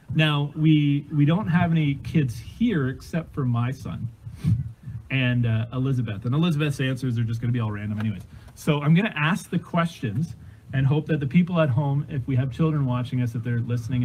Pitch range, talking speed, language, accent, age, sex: 115-155 Hz, 210 wpm, English, American, 30-49, male